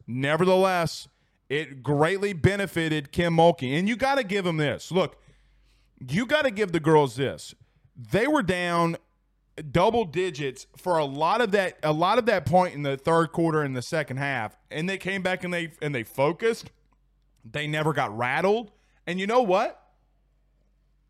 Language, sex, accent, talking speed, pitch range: English, male, American, 170 wpm, 140-185 Hz